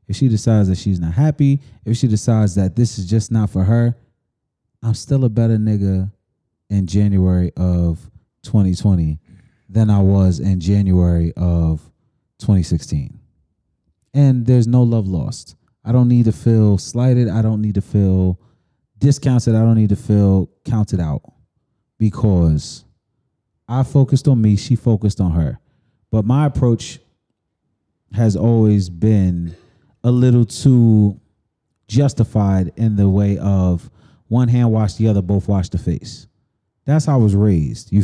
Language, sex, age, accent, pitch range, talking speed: English, male, 20-39, American, 95-120 Hz, 150 wpm